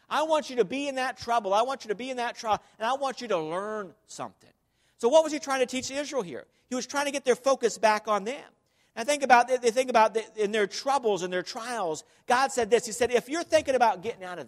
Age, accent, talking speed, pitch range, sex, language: 50-69, American, 280 wpm, 205-255 Hz, male, English